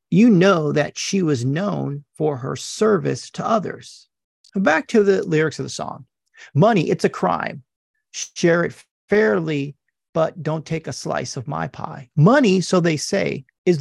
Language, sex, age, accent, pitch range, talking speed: English, male, 40-59, American, 145-195 Hz, 165 wpm